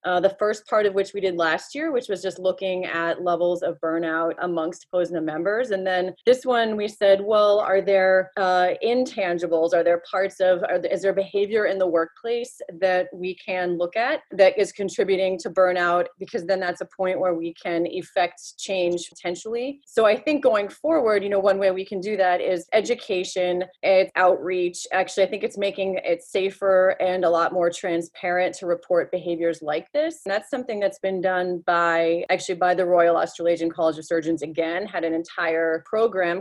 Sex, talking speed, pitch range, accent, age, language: female, 195 wpm, 170-195 Hz, American, 30-49, English